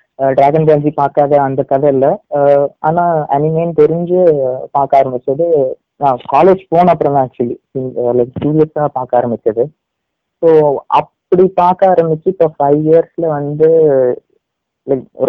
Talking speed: 100 wpm